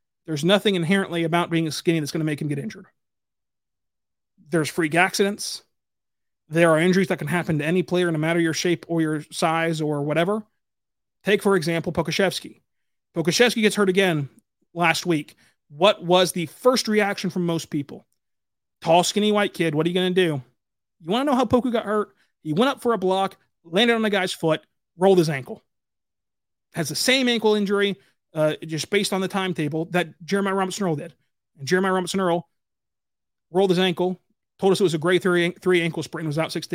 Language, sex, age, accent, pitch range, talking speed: English, male, 30-49, American, 160-200 Hz, 200 wpm